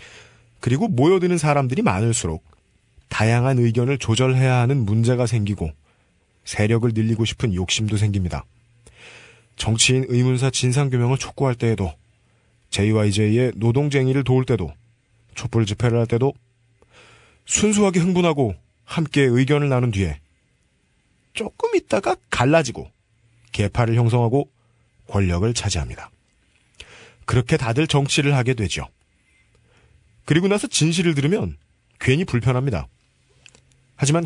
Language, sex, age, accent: Korean, male, 40-59, native